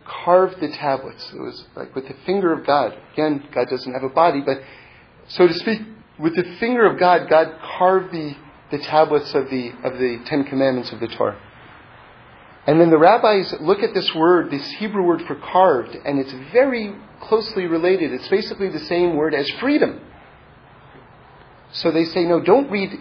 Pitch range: 150-235 Hz